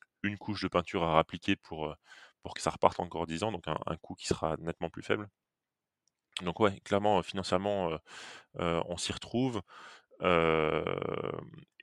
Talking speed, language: 170 wpm, French